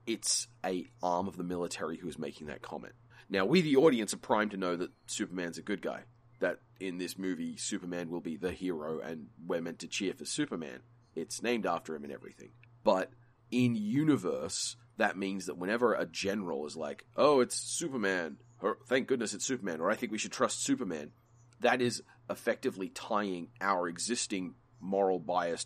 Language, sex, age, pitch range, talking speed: English, male, 30-49, 90-120 Hz, 185 wpm